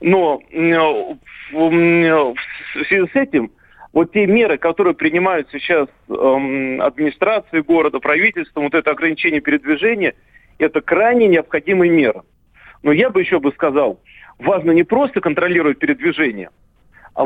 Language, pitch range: Russian, 160-255 Hz